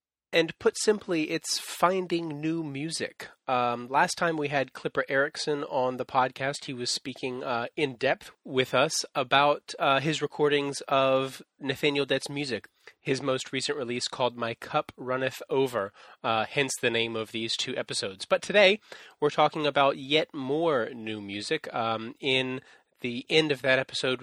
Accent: American